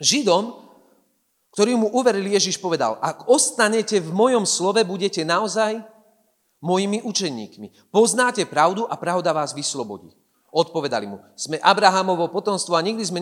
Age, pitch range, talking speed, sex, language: 40-59, 185-265 Hz, 130 wpm, male, Slovak